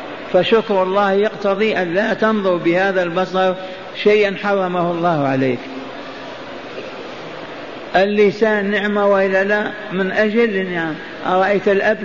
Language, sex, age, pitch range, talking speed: Arabic, male, 50-69, 180-205 Hz, 110 wpm